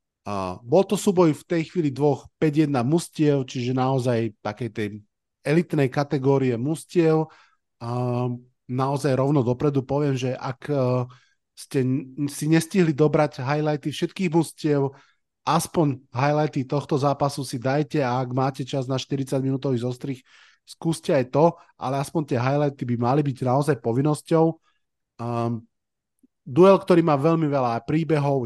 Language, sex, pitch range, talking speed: Slovak, male, 135-155 Hz, 135 wpm